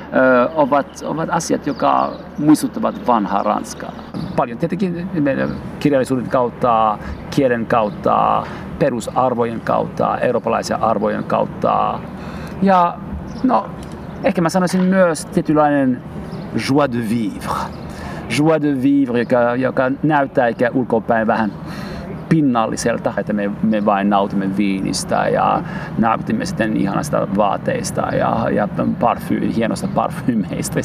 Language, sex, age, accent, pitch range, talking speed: Finnish, male, 50-69, native, 120-170 Hz, 105 wpm